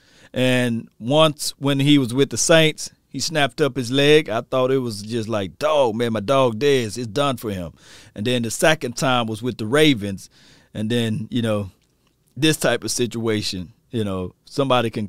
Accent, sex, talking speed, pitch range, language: American, male, 195 wpm, 90-130 Hz, English